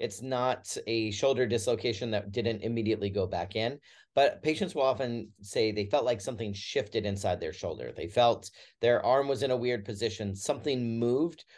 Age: 40-59